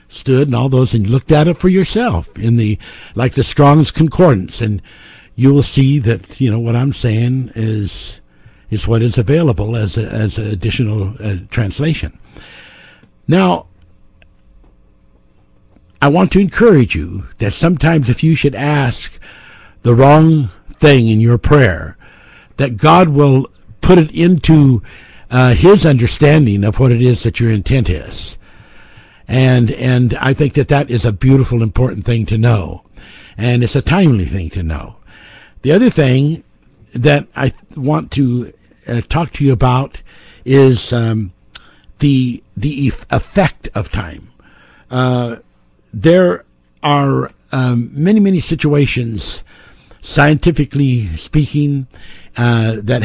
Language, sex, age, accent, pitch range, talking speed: English, male, 60-79, American, 110-145 Hz, 140 wpm